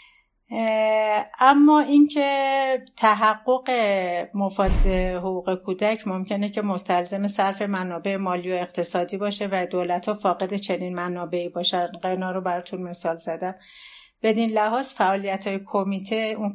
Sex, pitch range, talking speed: female, 180-220 Hz, 125 wpm